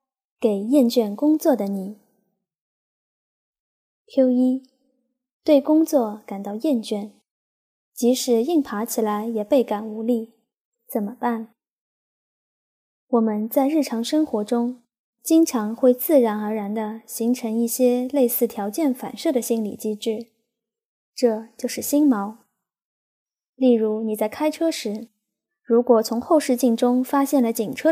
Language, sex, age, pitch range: Chinese, female, 10-29, 220-265 Hz